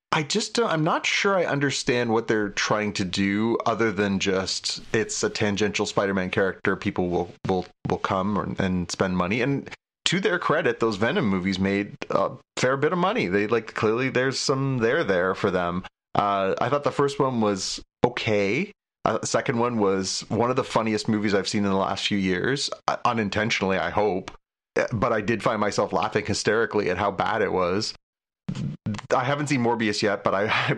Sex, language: male, English